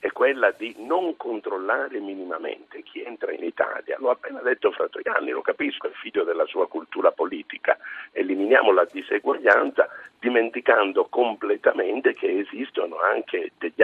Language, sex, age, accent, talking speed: Italian, male, 50-69, native, 145 wpm